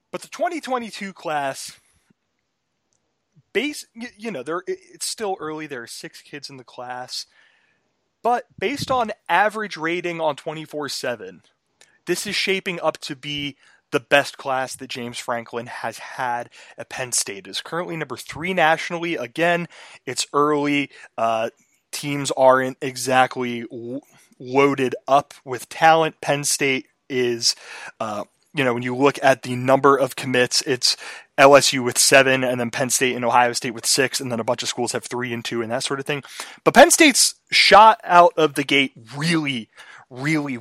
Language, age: English, 20-39